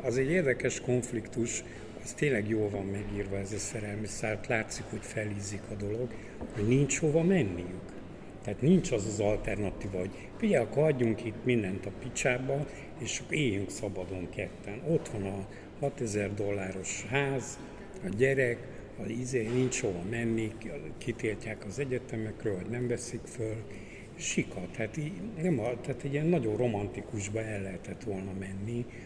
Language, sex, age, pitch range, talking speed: Hungarian, male, 60-79, 100-125 Hz, 145 wpm